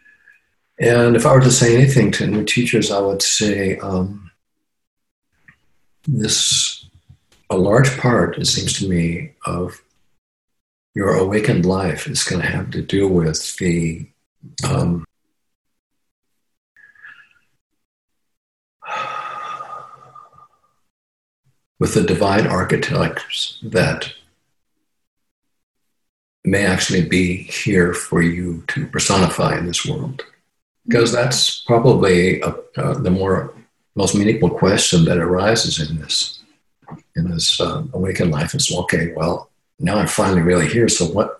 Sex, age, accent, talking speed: male, 50-69, American, 115 wpm